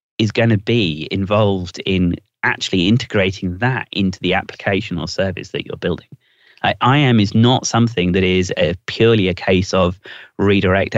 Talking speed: 170 wpm